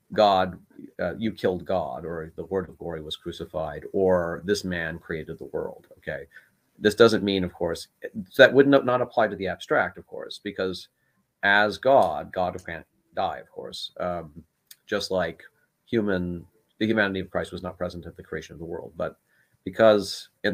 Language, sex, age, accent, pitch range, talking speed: English, male, 40-59, American, 85-100 Hz, 180 wpm